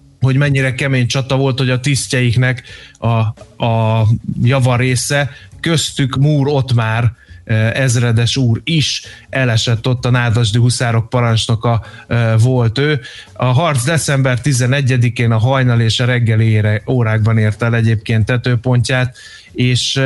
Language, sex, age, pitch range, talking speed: Hungarian, male, 30-49, 110-130 Hz, 125 wpm